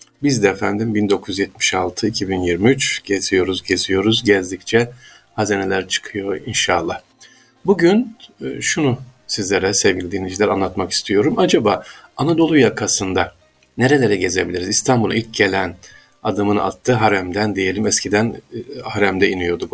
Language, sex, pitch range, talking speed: Turkish, male, 100-130 Hz, 95 wpm